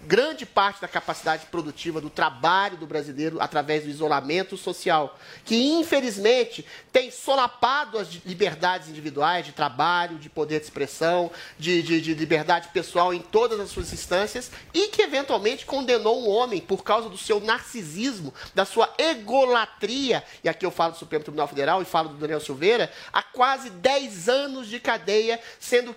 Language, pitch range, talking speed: Portuguese, 175-250 Hz, 160 wpm